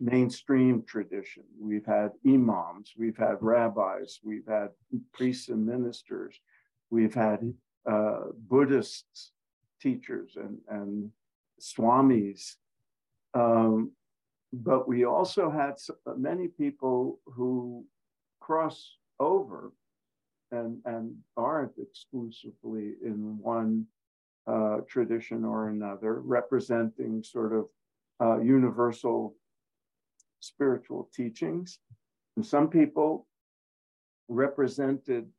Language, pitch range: English, 110-135 Hz